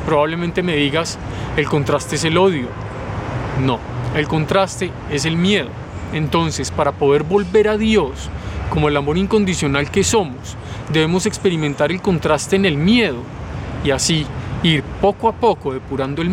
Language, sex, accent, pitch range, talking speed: Spanish, male, Colombian, 130-190 Hz, 150 wpm